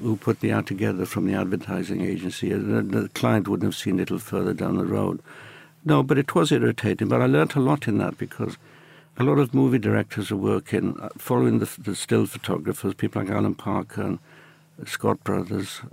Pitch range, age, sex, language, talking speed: 105-150 Hz, 60-79, male, English, 195 wpm